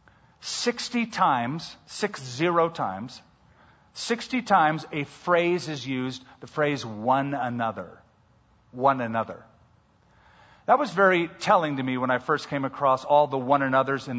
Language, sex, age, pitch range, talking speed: English, male, 50-69, 130-185 Hz, 140 wpm